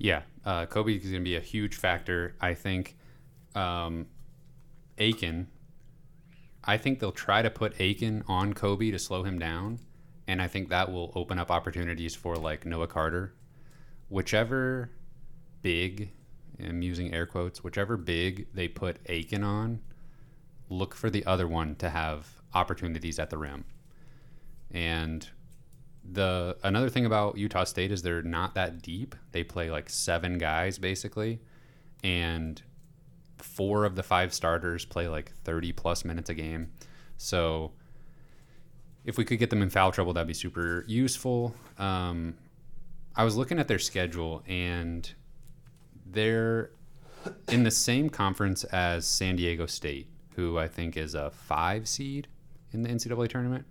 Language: English